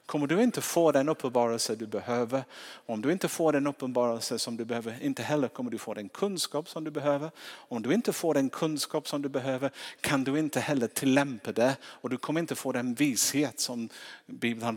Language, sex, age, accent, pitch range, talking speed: Swedish, male, 50-69, Norwegian, 110-140 Hz, 215 wpm